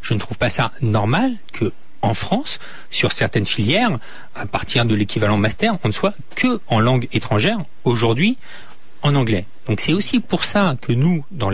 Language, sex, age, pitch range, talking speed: French, male, 40-59, 115-170 Hz, 180 wpm